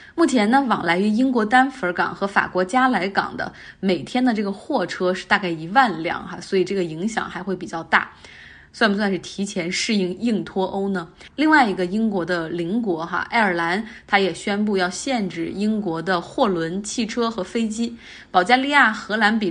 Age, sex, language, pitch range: 20-39, female, Chinese, 180-235 Hz